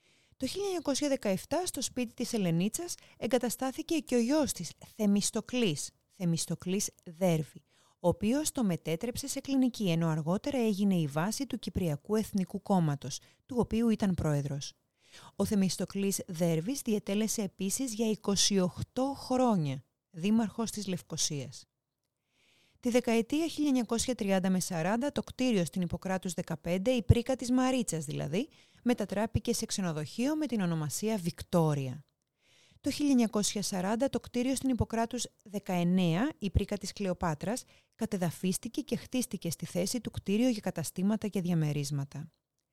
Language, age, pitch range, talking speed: Greek, 30-49, 170-245 Hz, 125 wpm